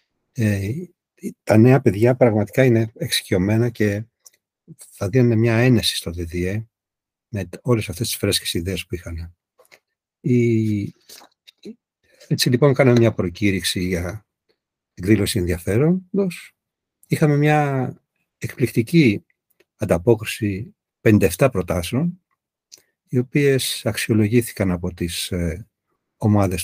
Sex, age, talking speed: male, 60-79, 95 wpm